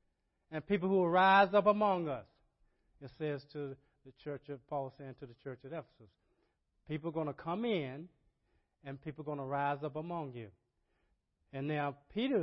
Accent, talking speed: American, 190 wpm